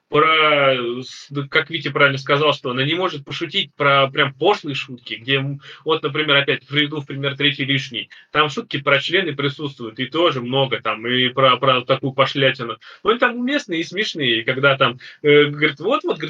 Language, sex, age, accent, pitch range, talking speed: Russian, male, 20-39, native, 135-165 Hz, 175 wpm